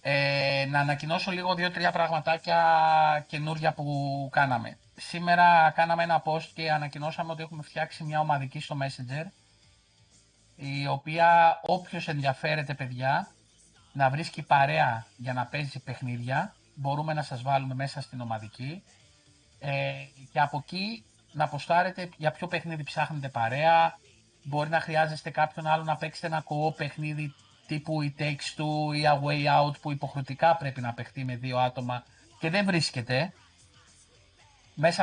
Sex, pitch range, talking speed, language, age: male, 130-155 Hz, 135 wpm, Greek, 30-49